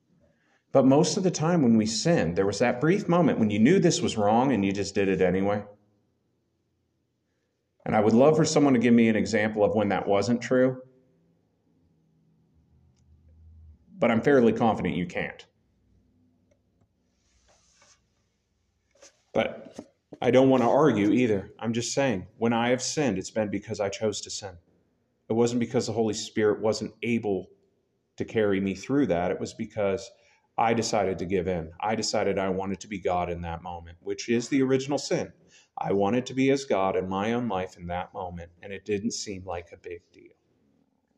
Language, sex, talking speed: English, male, 180 wpm